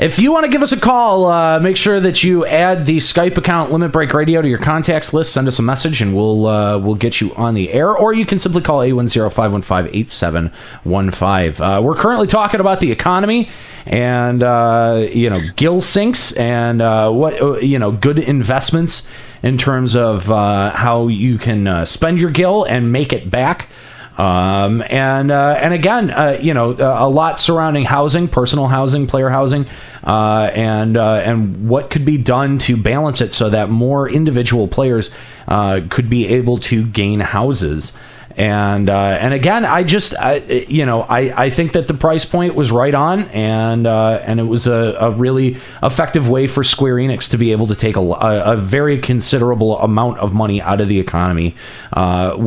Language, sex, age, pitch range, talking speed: English, male, 30-49, 105-145 Hz, 200 wpm